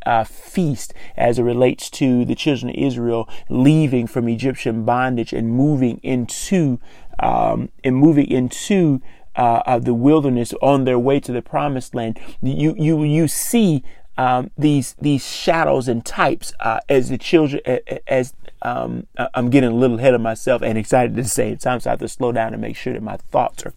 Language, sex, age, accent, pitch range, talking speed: English, male, 30-49, American, 115-140 Hz, 185 wpm